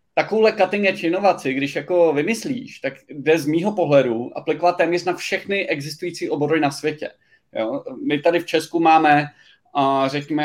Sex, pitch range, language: male, 145-170 Hz, Czech